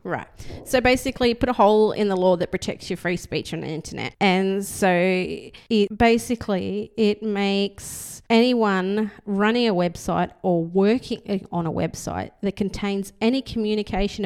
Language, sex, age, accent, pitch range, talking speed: English, female, 30-49, Australian, 175-215 Hz, 150 wpm